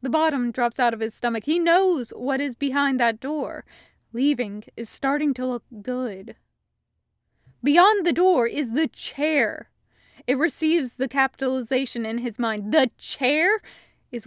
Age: 20-39